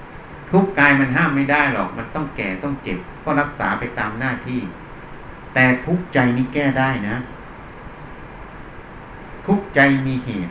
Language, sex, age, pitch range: Thai, male, 60-79, 115-155 Hz